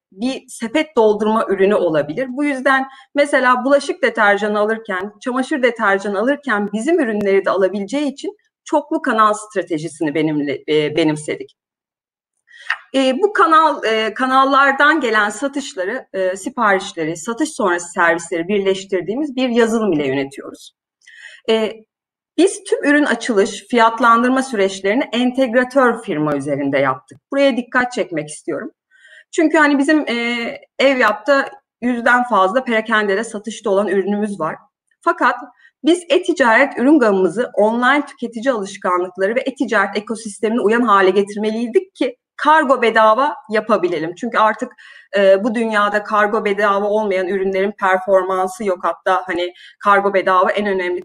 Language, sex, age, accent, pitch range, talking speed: Turkish, female, 30-49, native, 195-270 Hz, 120 wpm